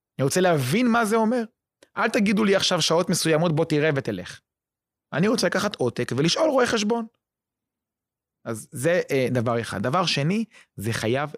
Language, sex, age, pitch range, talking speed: Hebrew, male, 30-49, 125-180 Hz, 165 wpm